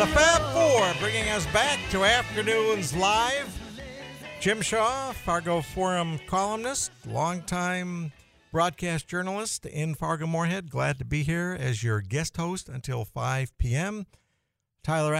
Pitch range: 125-175 Hz